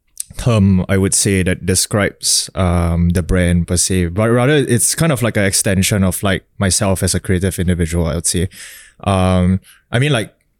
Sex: male